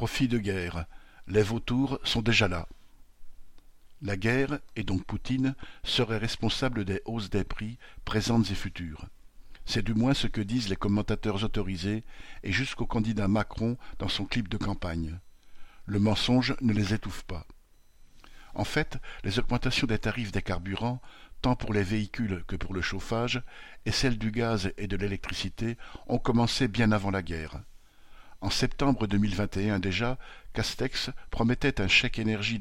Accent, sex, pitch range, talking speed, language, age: French, male, 100-120 Hz, 155 wpm, French, 60-79